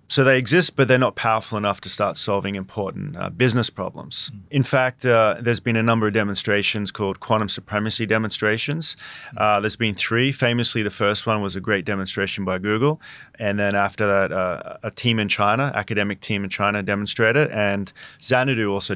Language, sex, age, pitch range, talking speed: English, male, 30-49, 100-125 Hz, 185 wpm